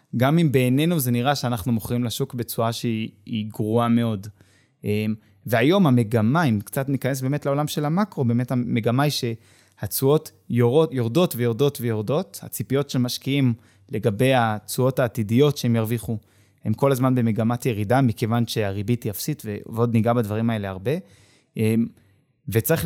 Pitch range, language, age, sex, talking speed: 110-145 Hz, Hebrew, 20-39, male, 130 wpm